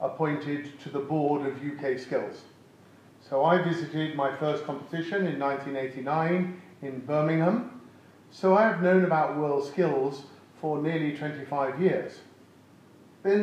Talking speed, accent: 125 wpm, British